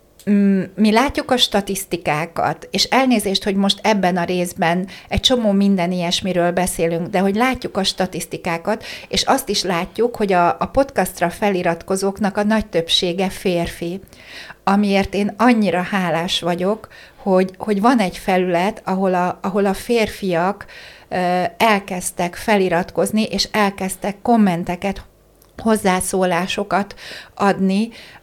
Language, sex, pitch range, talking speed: Hungarian, female, 185-215 Hz, 115 wpm